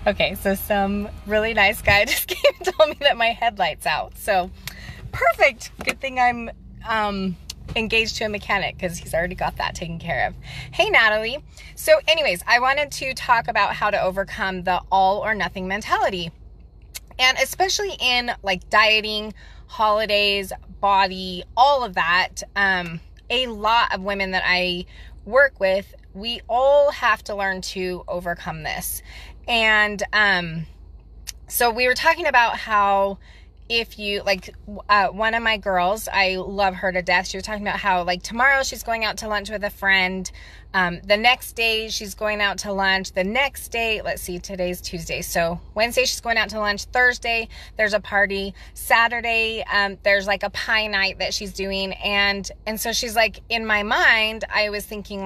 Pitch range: 190-230 Hz